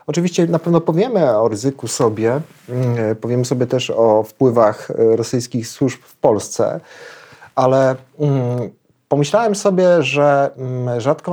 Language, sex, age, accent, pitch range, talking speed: Polish, male, 40-59, native, 115-140 Hz, 110 wpm